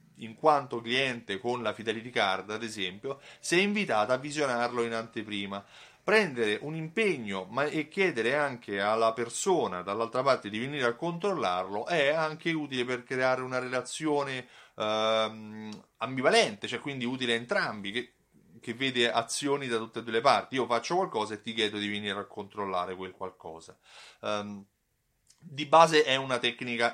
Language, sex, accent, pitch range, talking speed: Italian, male, native, 110-150 Hz, 165 wpm